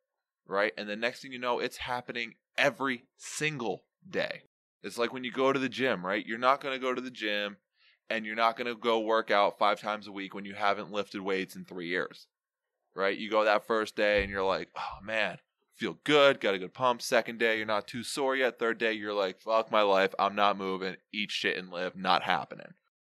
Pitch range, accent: 110-140 Hz, American